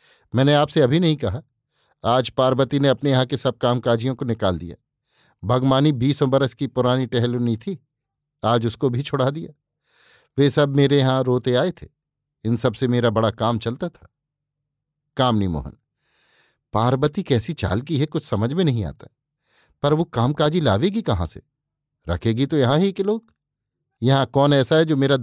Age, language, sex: 50-69, Hindi, male